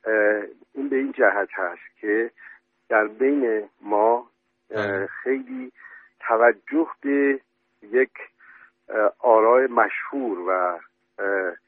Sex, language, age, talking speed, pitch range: male, Persian, 50-69, 80 wpm, 115-155 Hz